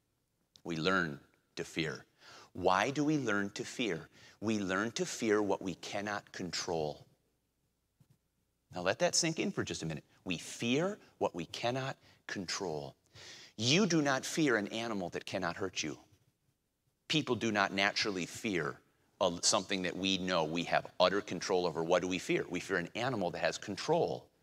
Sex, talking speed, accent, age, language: male, 165 wpm, American, 30-49, English